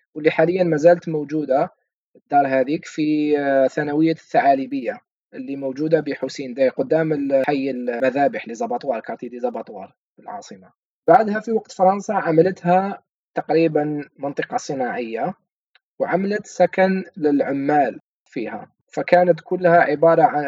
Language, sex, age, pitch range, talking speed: Arabic, male, 20-39, 135-185 Hz, 105 wpm